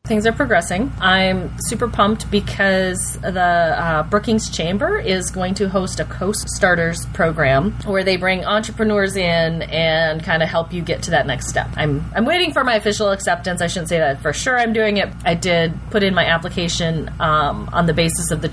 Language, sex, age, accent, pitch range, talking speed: English, female, 30-49, American, 150-200 Hz, 200 wpm